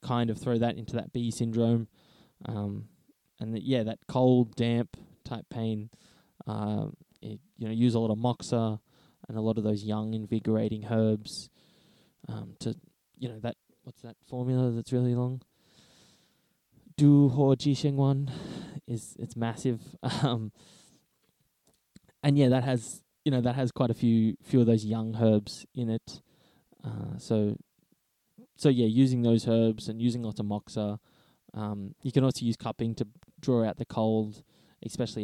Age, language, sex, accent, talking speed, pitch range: 10-29, English, male, Australian, 160 wpm, 110-130 Hz